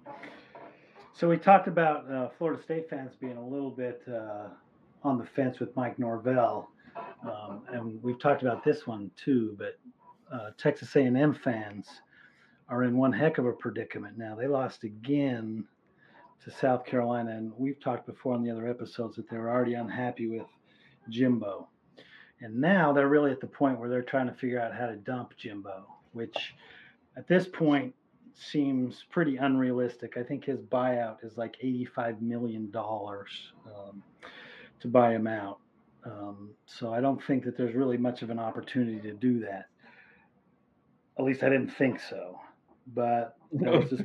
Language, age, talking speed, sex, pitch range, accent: English, 40-59, 170 wpm, male, 115-140 Hz, American